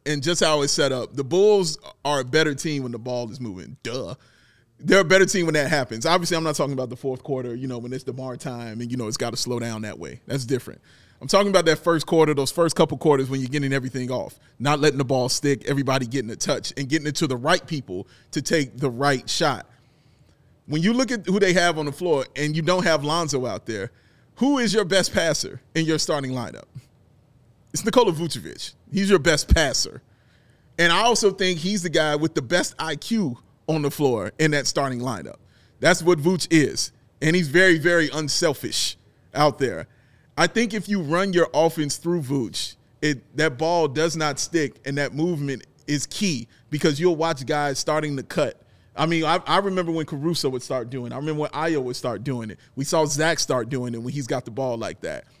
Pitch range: 130-170 Hz